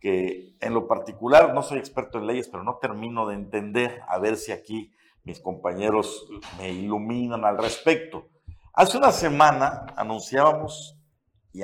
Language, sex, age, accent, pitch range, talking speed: Spanish, male, 50-69, Mexican, 100-135 Hz, 150 wpm